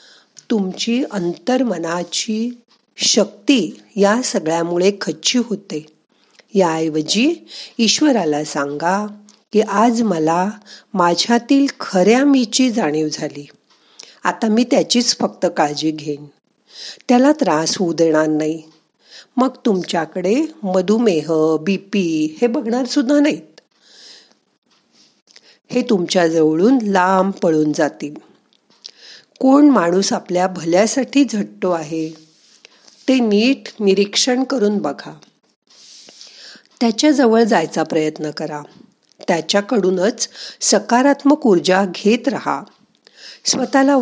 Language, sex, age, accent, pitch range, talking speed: Marathi, female, 50-69, native, 165-245 Hz, 70 wpm